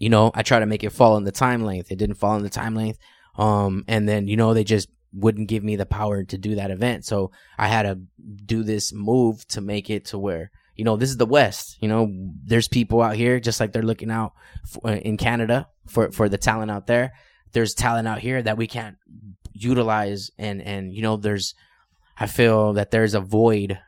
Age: 10-29